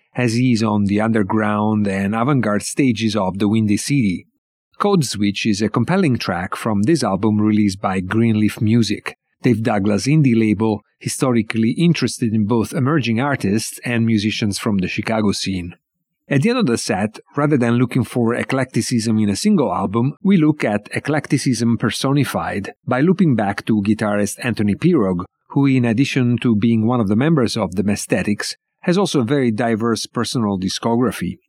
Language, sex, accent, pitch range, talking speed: English, male, Italian, 105-125 Hz, 170 wpm